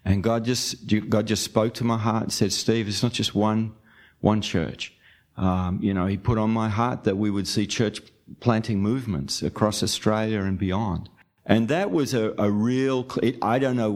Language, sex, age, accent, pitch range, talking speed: English, male, 50-69, Australian, 100-120 Hz, 200 wpm